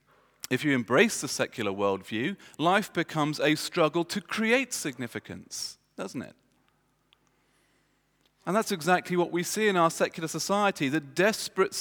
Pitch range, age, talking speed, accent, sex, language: 125-175 Hz, 40-59, 135 wpm, British, male, English